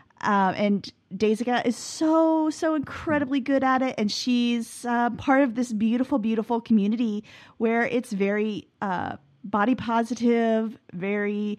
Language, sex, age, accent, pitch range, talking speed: English, female, 30-49, American, 200-245 Hz, 135 wpm